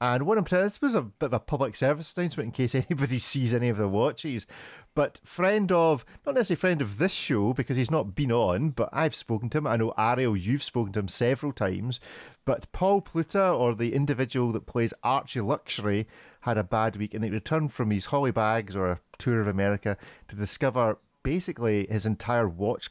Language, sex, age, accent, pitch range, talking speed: English, male, 30-49, British, 105-130 Hz, 210 wpm